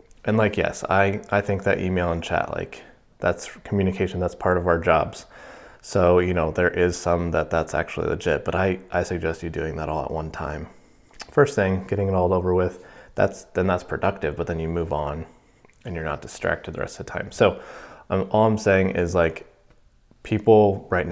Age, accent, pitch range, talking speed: 20-39, American, 85-100 Hz, 205 wpm